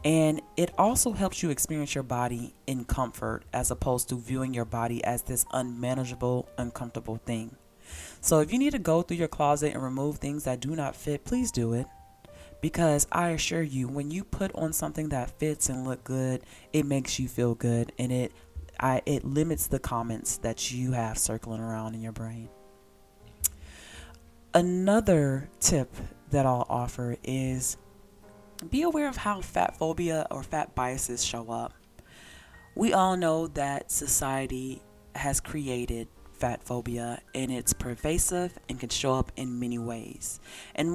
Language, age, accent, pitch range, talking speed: English, 20-39, American, 115-150 Hz, 165 wpm